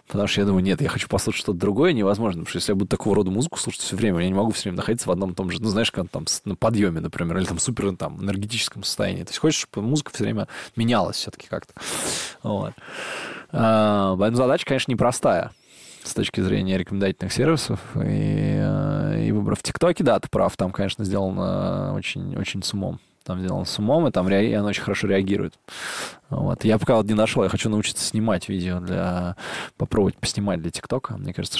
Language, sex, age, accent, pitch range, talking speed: Russian, male, 20-39, native, 95-115 Hz, 205 wpm